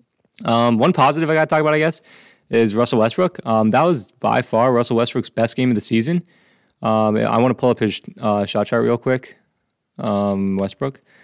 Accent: American